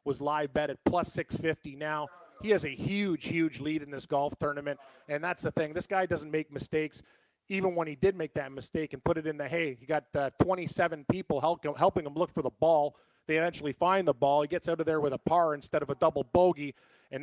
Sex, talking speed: male, 240 wpm